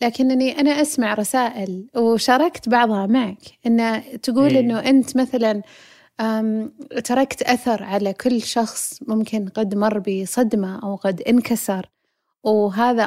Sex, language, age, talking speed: female, Arabic, 30-49, 115 wpm